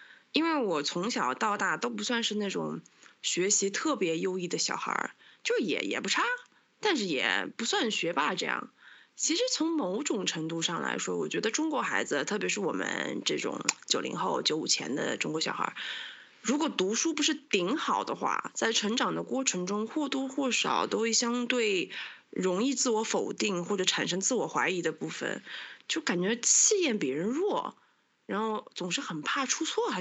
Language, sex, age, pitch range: Chinese, female, 20-39, 185-270 Hz